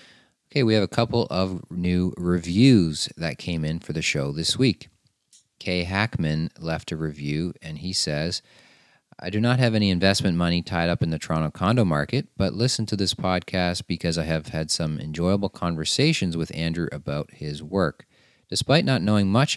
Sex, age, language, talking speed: male, 40-59, English, 180 wpm